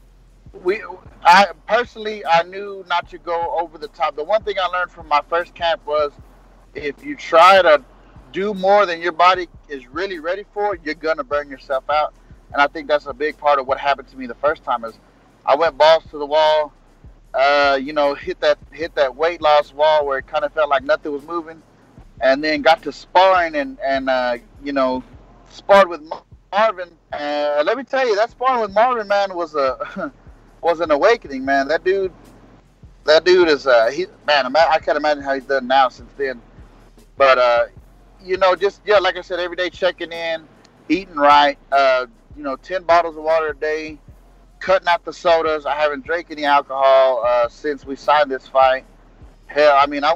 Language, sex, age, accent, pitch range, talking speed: English, male, 30-49, American, 145-180 Hz, 205 wpm